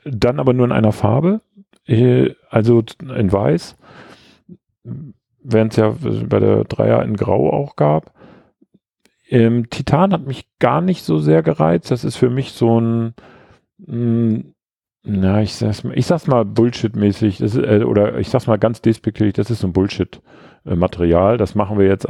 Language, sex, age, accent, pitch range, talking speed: German, male, 40-59, German, 90-120 Hz, 165 wpm